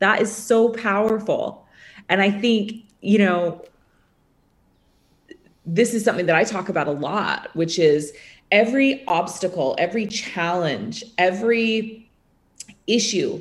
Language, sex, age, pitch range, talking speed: English, female, 30-49, 155-205 Hz, 115 wpm